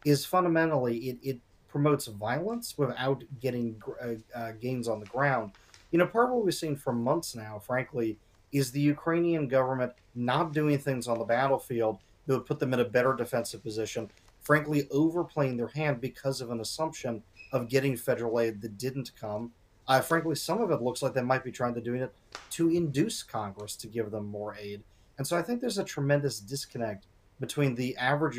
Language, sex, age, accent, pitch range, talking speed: English, male, 30-49, American, 110-140 Hz, 195 wpm